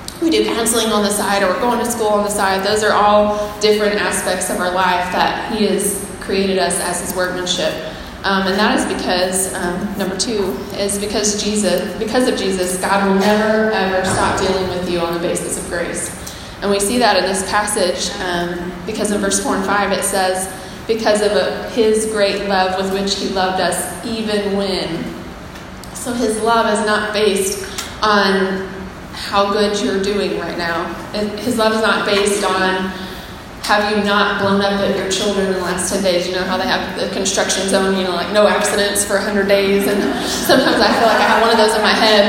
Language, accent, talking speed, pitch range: English, American, 210 wpm, 190-215 Hz